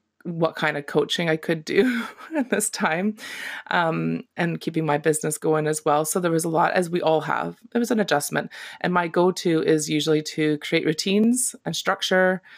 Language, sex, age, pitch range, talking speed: English, female, 20-39, 145-175 Hz, 195 wpm